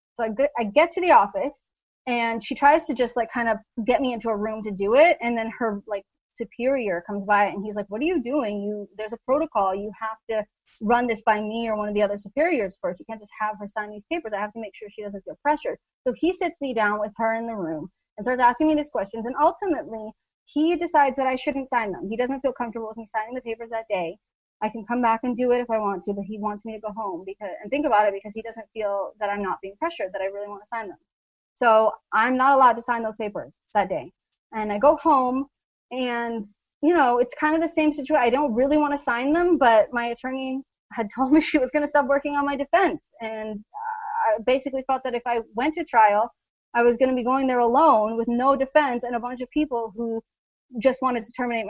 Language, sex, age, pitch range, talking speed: English, female, 30-49, 215-280 Hz, 255 wpm